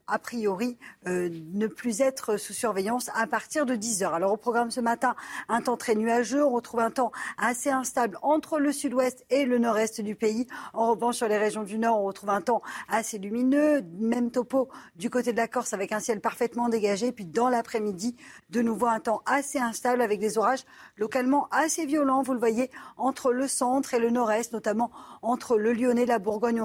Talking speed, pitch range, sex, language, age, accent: 205 wpm, 215-255 Hz, female, French, 40-59, French